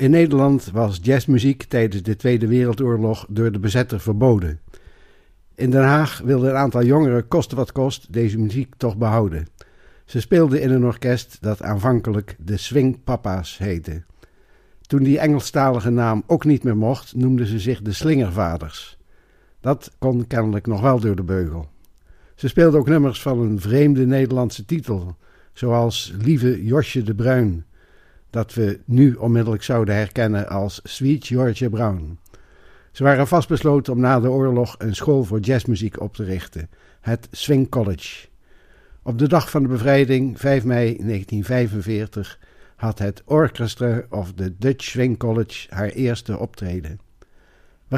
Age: 60-79